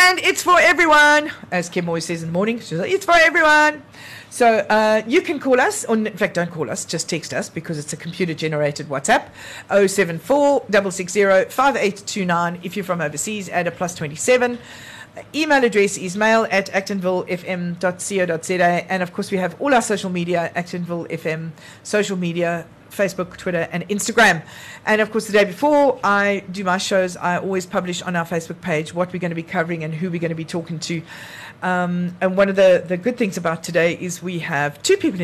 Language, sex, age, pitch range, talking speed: English, female, 40-59, 165-205 Hz, 200 wpm